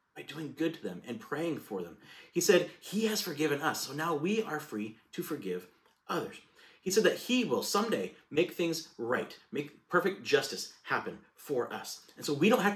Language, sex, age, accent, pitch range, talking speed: English, male, 30-49, American, 120-190 Hz, 200 wpm